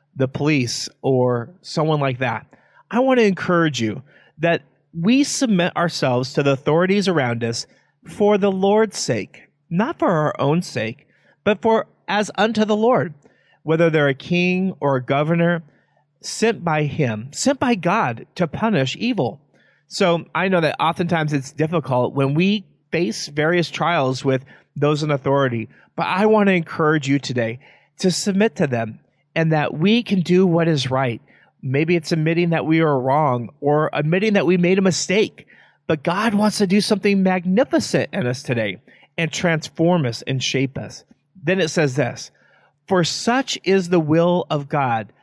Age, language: 40-59, English